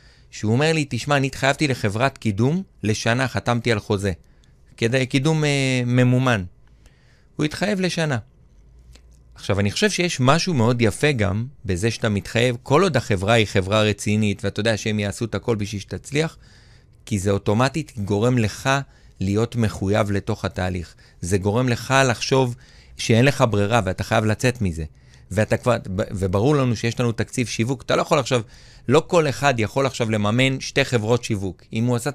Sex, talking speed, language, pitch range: male, 165 wpm, Hebrew, 105-140 Hz